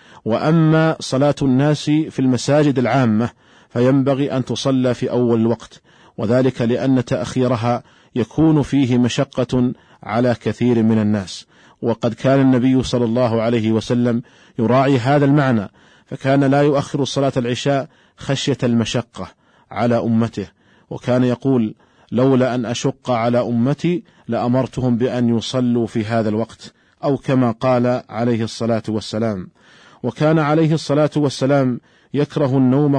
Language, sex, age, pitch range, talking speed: Arabic, male, 40-59, 120-140 Hz, 120 wpm